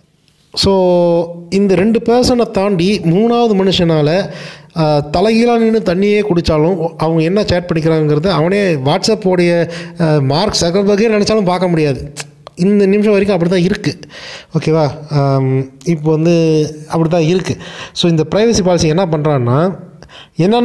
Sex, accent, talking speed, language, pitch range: male, native, 120 wpm, Tamil, 145-185 Hz